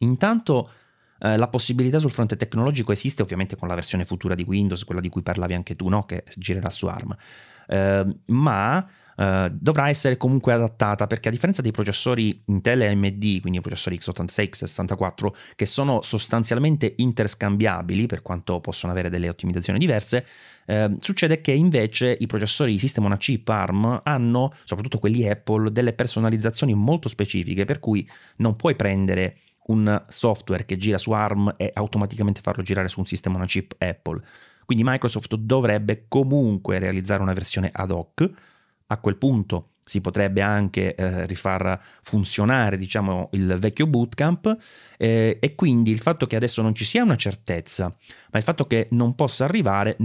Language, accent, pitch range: Italian, native, 95-125 Hz